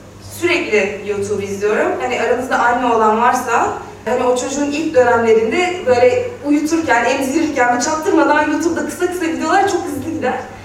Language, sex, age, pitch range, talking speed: Turkish, female, 30-49, 215-305 Hz, 130 wpm